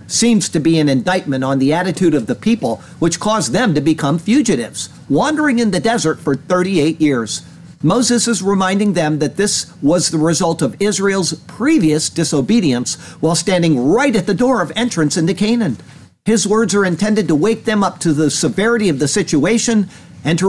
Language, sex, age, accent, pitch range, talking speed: English, male, 50-69, American, 155-205 Hz, 185 wpm